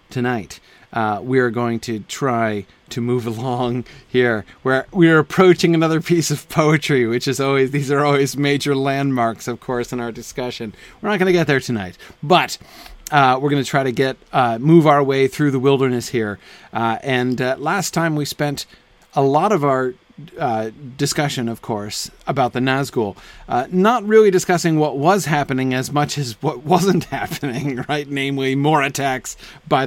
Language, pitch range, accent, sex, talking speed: English, 115-145 Hz, American, male, 185 wpm